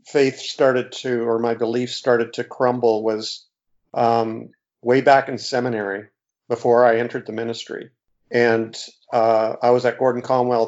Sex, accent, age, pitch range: male, American, 50-69, 115-135 Hz